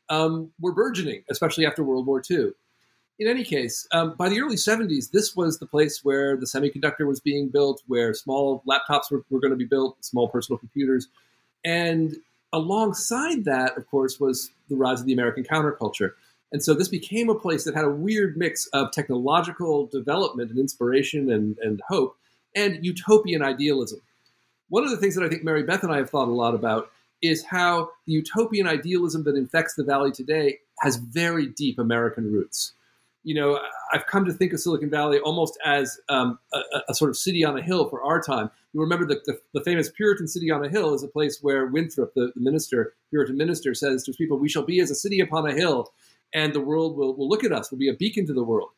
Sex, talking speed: male, 215 wpm